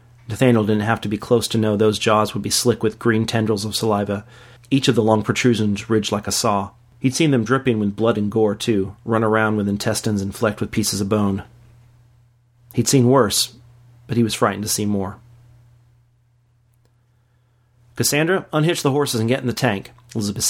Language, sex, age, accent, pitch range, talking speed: English, male, 40-59, American, 110-120 Hz, 195 wpm